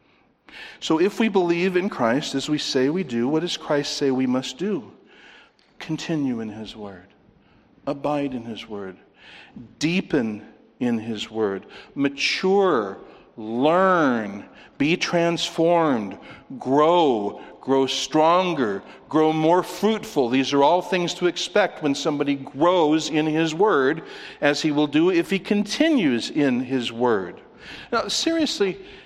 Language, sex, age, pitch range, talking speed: English, male, 60-79, 140-215 Hz, 130 wpm